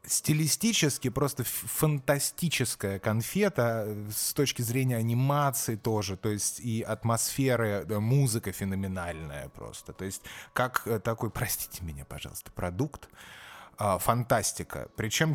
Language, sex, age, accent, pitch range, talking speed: Russian, male, 20-39, native, 100-125 Hz, 100 wpm